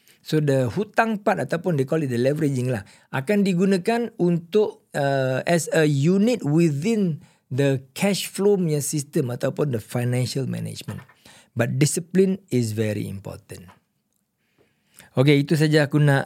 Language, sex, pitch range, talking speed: Malay, male, 130-175 Hz, 135 wpm